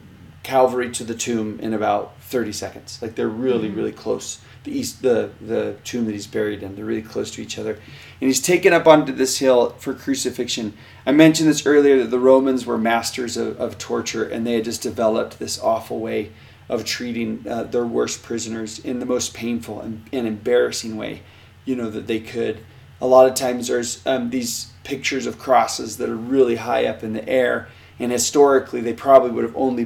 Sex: male